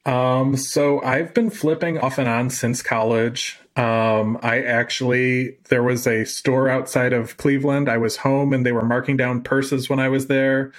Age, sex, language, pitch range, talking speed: 30-49, male, English, 115-135 Hz, 185 wpm